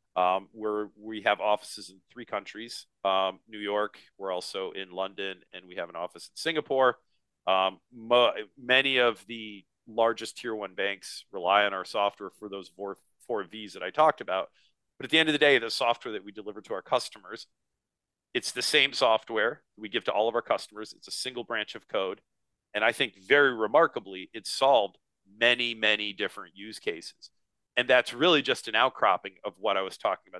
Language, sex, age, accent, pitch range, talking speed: English, male, 40-59, American, 100-120 Hz, 195 wpm